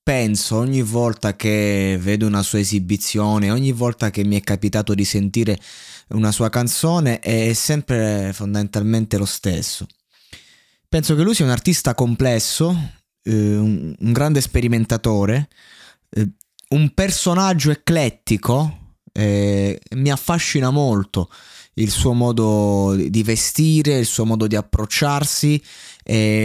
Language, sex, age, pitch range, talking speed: Italian, male, 20-39, 105-130 Hz, 125 wpm